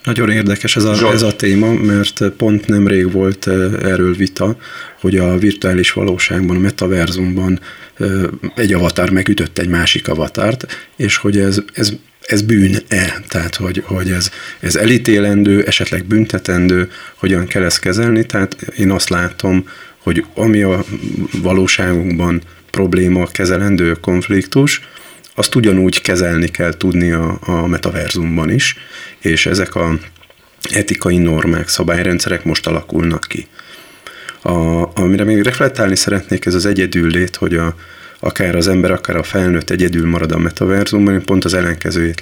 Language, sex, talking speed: Hungarian, male, 135 wpm